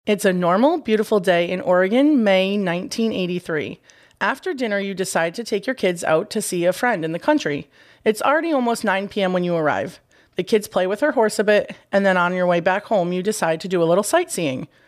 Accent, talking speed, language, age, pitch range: American, 220 wpm, English, 30-49, 180-220 Hz